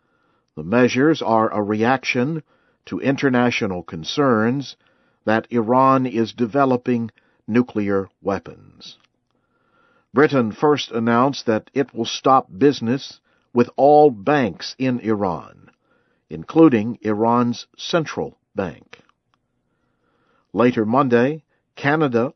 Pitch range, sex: 115-135 Hz, male